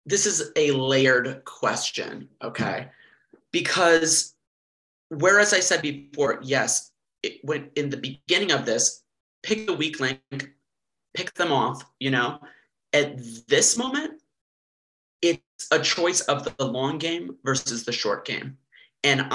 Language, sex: English, male